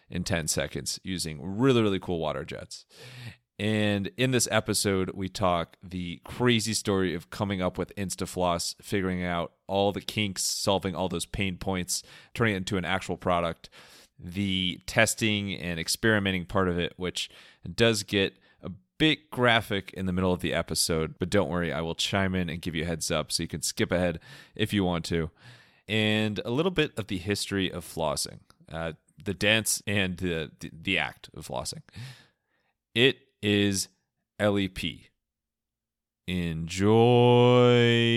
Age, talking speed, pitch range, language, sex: 30-49, 160 wpm, 85-105 Hz, English, male